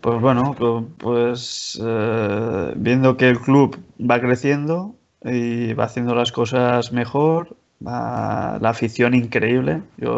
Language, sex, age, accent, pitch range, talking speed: Spanish, male, 20-39, Spanish, 115-130 Hz, 120 wpm